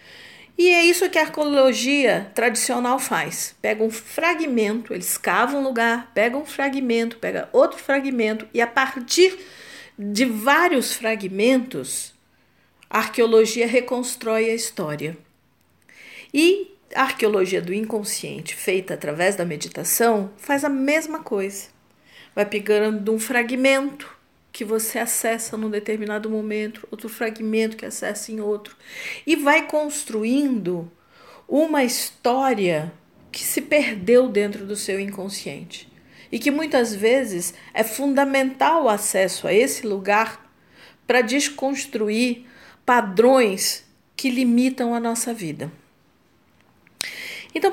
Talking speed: 115 wpm